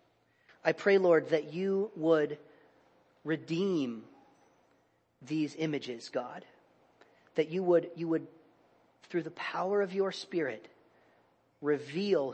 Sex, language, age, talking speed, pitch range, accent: male, English, 40-59, 105 wpm, 150-180 Hz, American